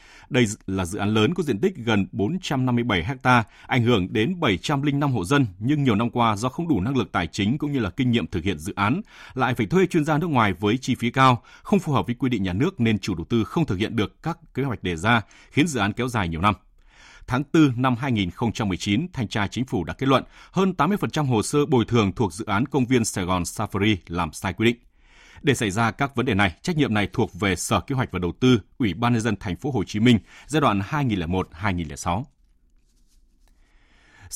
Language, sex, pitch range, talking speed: Vietnamese, male, 100-135 Hz, 235 wpm